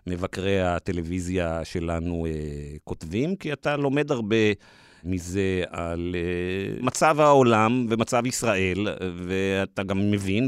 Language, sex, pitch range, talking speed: Hebrew, male, 80-105 Hz, 95 wpm